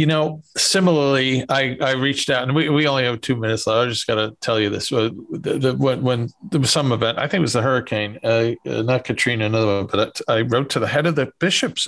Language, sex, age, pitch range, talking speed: English, male, 50-69, 125-160 Hz, 240 wpm